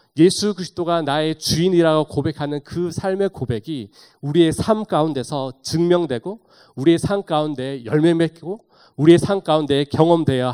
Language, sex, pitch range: Korean, male, 120-170 Hz